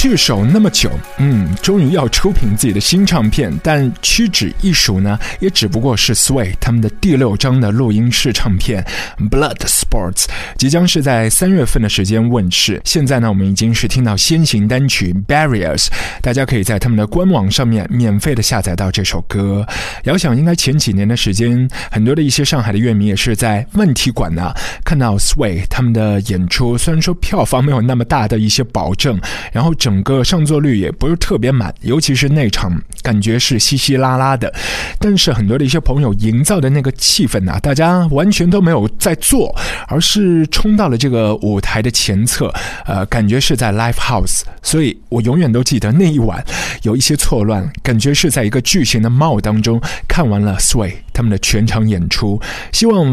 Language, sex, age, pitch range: Chinese, male, 20-39, 105-140 Hz